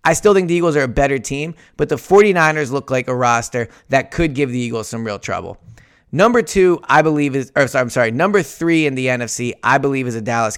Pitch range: 120-150 Hz